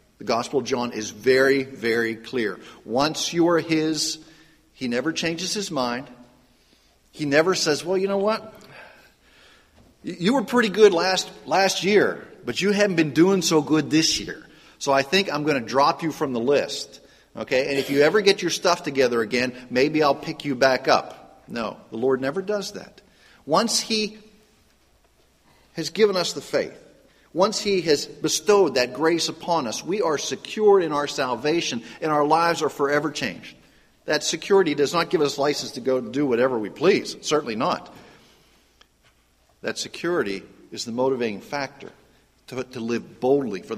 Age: 40-59